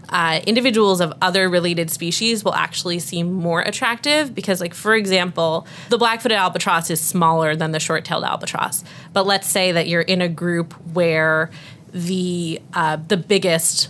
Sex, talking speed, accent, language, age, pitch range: female, 160 wpm, American, English, 20-39, 165-195 Hz